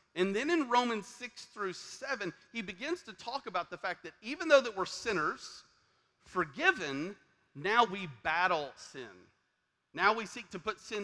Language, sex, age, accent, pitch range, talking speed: English, male, 40-59, American, 165-235 Hz, 170 wpm